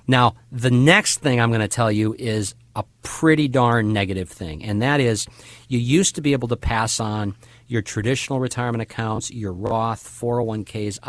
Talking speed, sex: 180 wpm, male